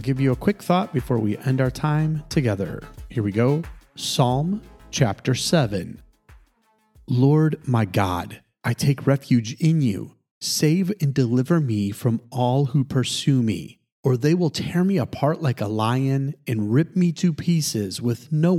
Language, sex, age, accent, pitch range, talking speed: English, male, 30-49, American, 115-150 Hz, 160 wpm